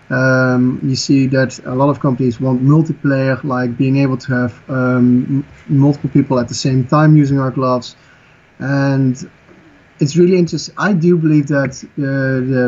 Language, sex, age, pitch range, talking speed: English, male, 30-49, 130-150 Hz, 170 wpm